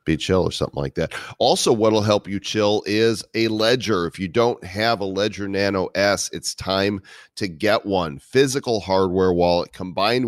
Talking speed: 185 wpm